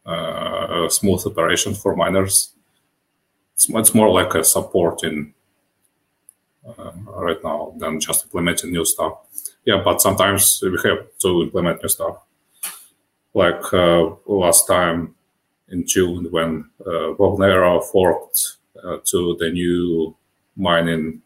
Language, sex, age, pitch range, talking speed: English, male, 30-49, 85-100 Hz, 125 wpm